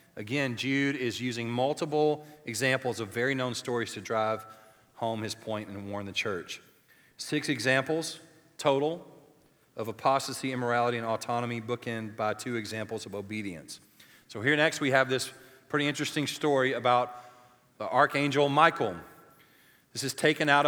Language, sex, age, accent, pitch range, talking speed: English, male, 40-59, American, 125-160 Hz, 145 wpm